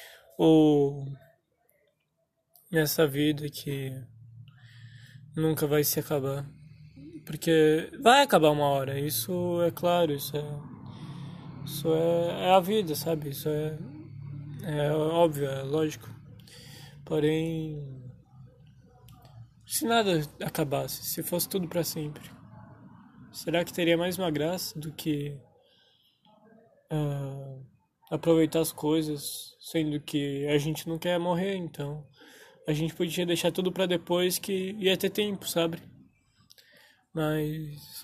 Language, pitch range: Portuguese, 145-170 Hz